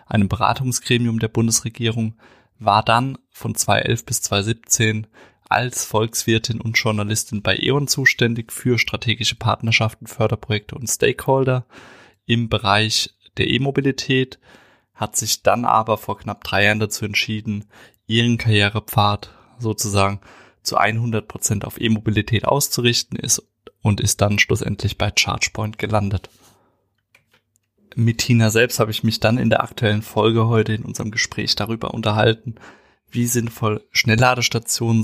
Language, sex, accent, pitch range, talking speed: German, male, German, 105-120 Hz, 125 wpm